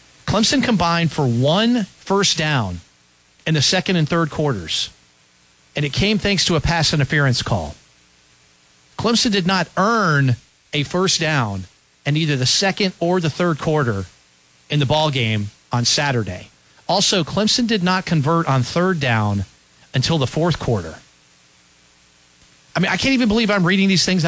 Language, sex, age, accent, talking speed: English, male, 40-59, American, 160 wpm